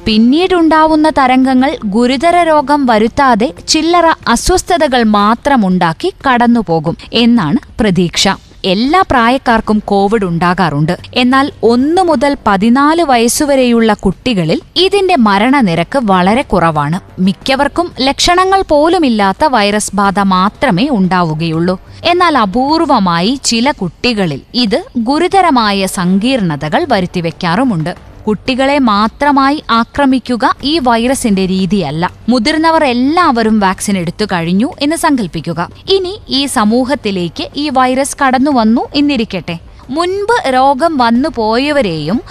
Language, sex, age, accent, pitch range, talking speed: Malayalam, female, 20-39, native, 195-290 Hz, 90 wpm